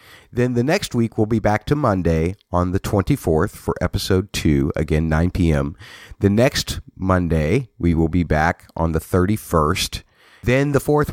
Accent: American